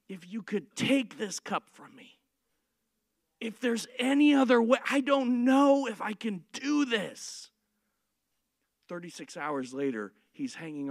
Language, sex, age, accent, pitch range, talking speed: English, male, 40-59, American, 150-235 Hz, 145 wpm